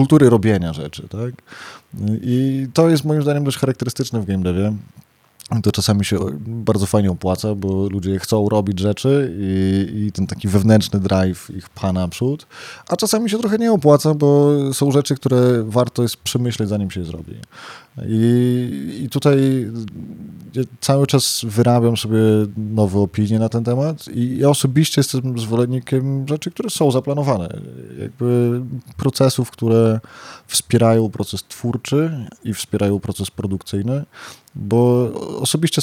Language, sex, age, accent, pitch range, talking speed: Polish, male, 20-39, native, 100-130 Hz, 140 wpm